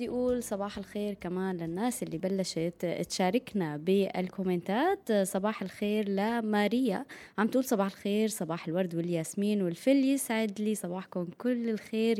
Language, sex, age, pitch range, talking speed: Arabic, female, 20-39, 180-220 Hz, 125 wpm